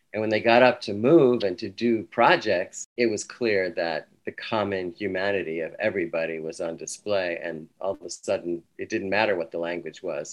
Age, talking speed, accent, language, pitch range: 40-59, 205 wpm, American, English, 90-105 Hz